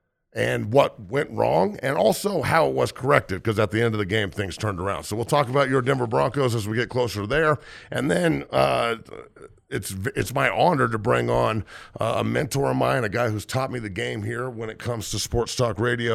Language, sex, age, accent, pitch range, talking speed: English, male, 50-69, American, 100-135 Hz, 230 wpm